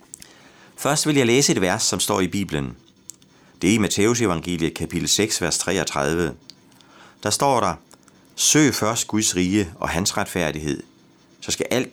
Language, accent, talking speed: Danish, native, 160 wpm